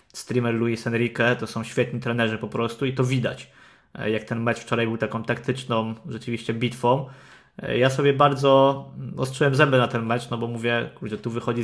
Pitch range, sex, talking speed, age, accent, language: 115-130 Hz, male, 180 wpm, 20-39, native, Polish